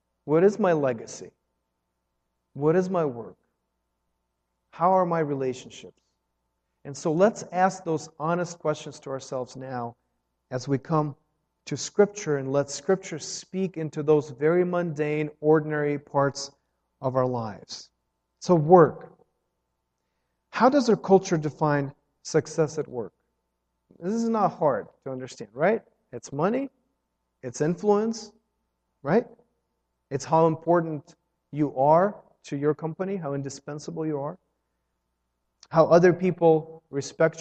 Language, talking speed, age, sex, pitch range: English, 125 wpm, 40-59, male, 115-175 Hz